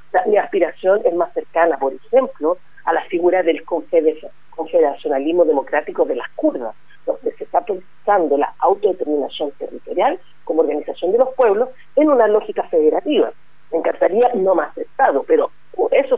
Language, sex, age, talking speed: Spanish, female, 40-59, 150 wpm